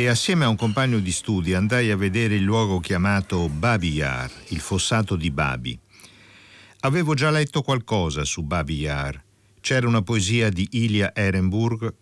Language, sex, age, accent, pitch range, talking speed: Italian, male, 50-69, native, 85-115 Hz, 160 wpm